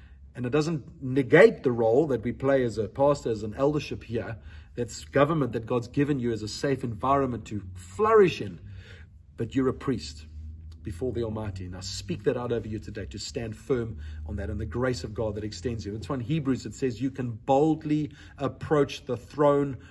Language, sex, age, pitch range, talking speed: English, male, 40-59, 115-150 Hz, 205 wpm